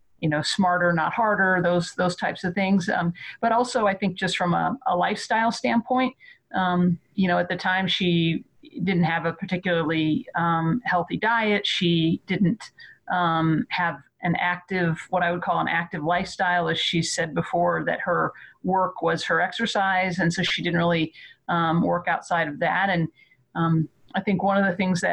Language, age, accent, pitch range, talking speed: English, 40-59, American, 170-195 Hz, 180 wpm